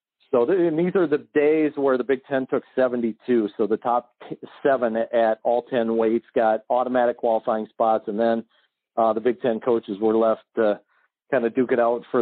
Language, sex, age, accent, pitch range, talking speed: English, male, 40-59, American, 110-125 Hz, 190 wpm